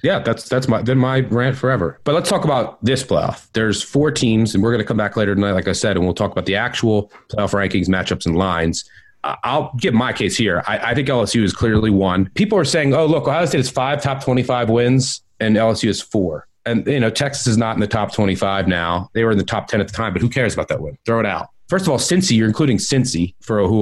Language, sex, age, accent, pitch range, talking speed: English, male, 30-49, American, 100-135 Hz, 260 wpm